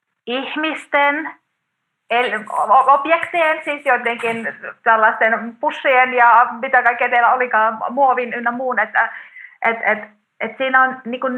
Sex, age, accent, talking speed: female, 30-49, native, 110 wpm